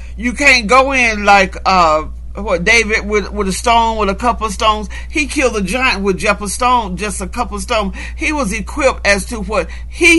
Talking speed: 220 wpm